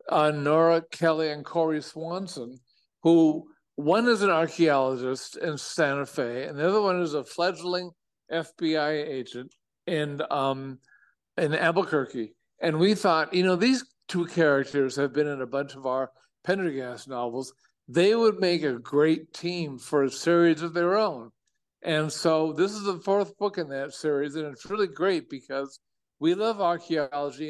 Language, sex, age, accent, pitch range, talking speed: English, male, 50-69, American, 145-180 Hz, 160 wpm